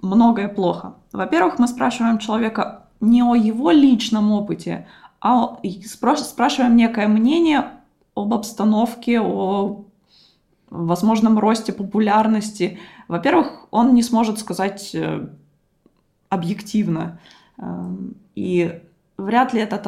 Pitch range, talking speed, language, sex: 200-240 Hz, 95 wpm, Russian, female